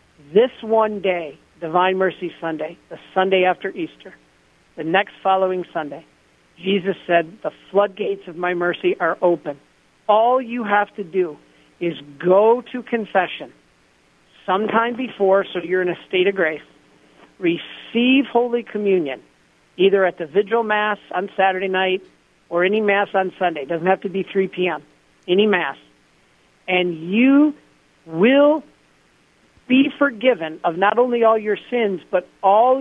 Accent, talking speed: American, 145 wpm